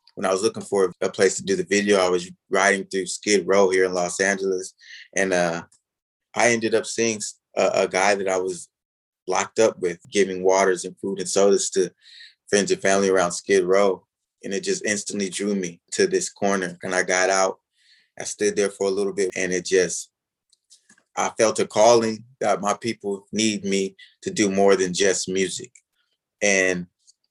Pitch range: 95-125 Hz